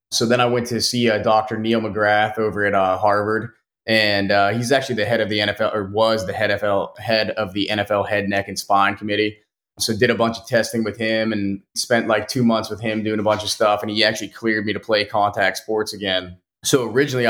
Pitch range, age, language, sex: 100-110 Hz, 20-39, English, male